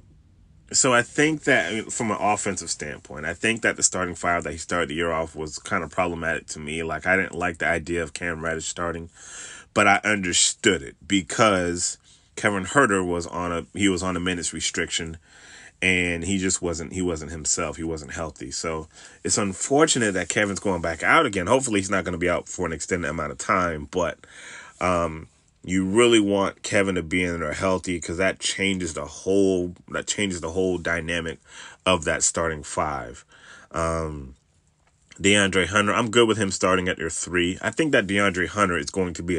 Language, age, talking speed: English, 30-49, 195 wpm